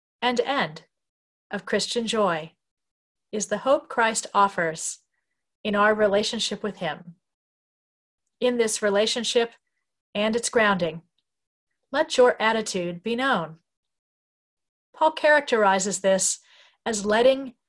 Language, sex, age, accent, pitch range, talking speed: English, female, 40-59, American, 175-240 Hz, 105 wpm